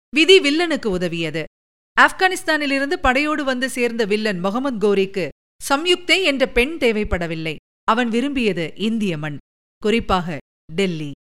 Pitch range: 200-295 Hz